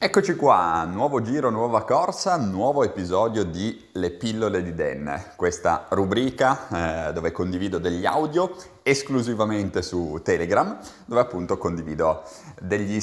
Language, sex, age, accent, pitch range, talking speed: Italian, male, 30-49, native, 90-125 Hz, 125 wpm